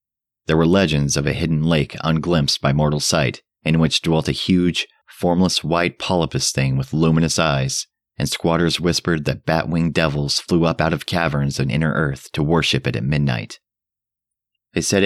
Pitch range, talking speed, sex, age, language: 70-80 Hz, 175 wpm, male, 30-49, English